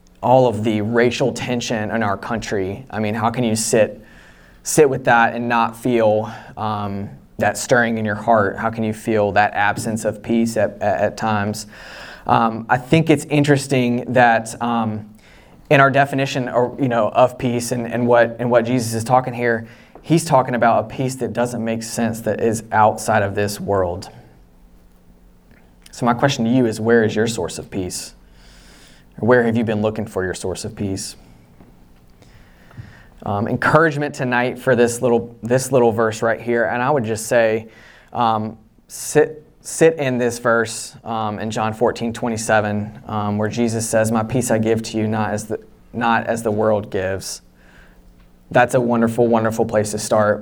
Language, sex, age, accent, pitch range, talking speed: English, male, 20-39, American, 105-120 Hz, 180 wpm